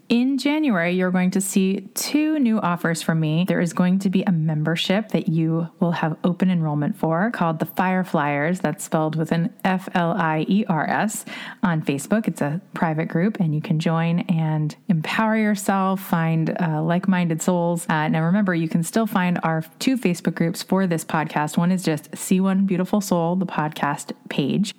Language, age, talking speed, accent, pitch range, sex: English, 30-49, 180 wpm, American, 160-200 Hz, female